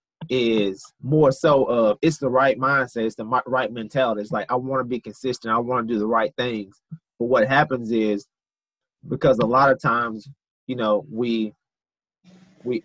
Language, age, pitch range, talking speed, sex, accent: English, 30-49, 110-135 Hz, 180 wpm, male, American